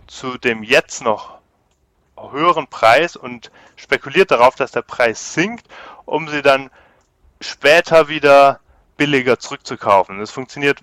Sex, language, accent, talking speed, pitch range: male, German, German, 120 wpm, 130-155 Hz